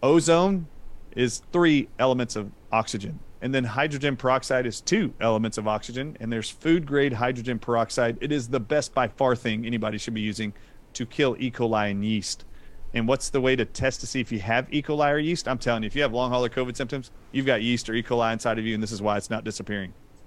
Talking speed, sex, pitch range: 230 wpm, male, 110-130 Hz